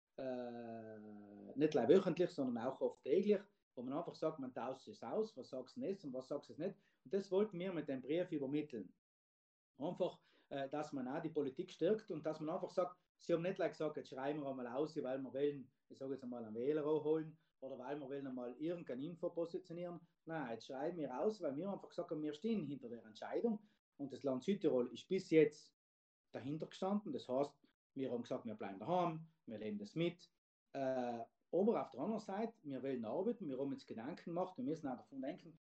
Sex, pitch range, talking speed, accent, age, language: male, 135-180 Hz, 215 wpm, Austrian, 30-49, German